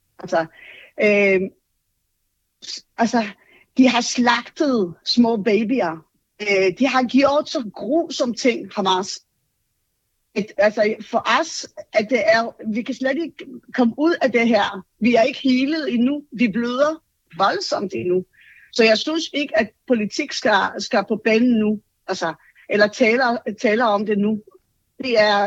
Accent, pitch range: native, 210-285 Hz